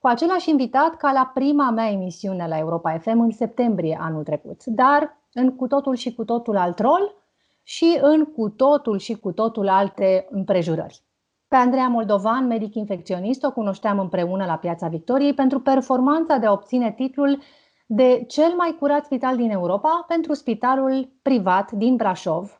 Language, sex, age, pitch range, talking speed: Romanian, female, 30-49, 210-275 Hz, 160 wpm